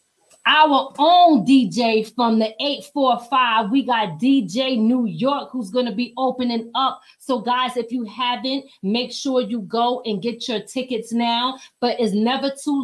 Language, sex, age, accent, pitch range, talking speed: English, female, 30-49, American, 215-260 Hz, 165 wpm